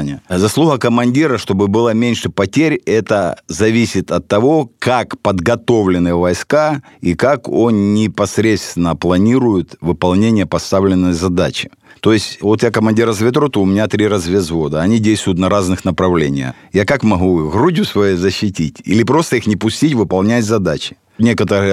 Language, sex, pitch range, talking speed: Russian, male, 90-115 Hz, 140 wpm